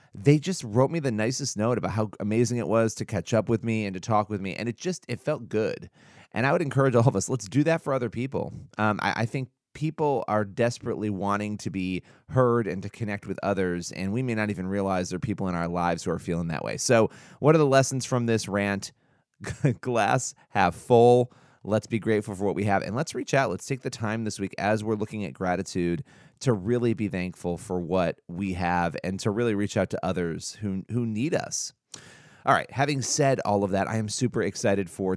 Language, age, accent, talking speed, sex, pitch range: English, 30-49, American, 235 wpm, male, 95-120 Hz